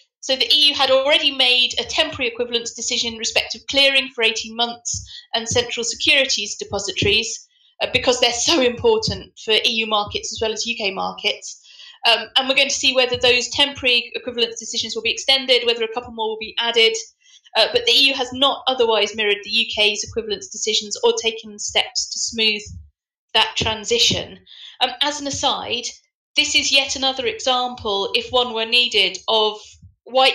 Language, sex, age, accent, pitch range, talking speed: English, female, 30-49, British, 225-275 Hz, 175 wpm